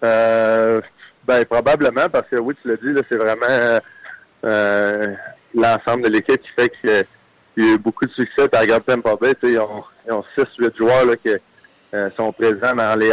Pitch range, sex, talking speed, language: 110-130 Hz, male, 185 wpm, French